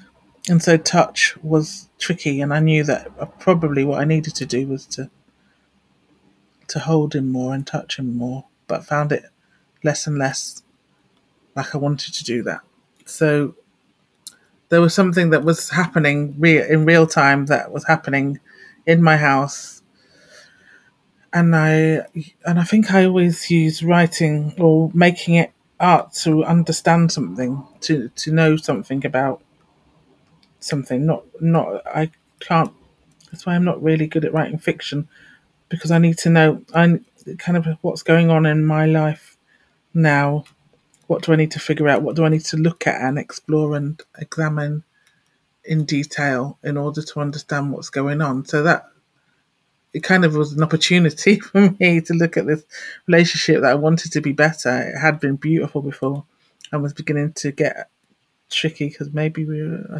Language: English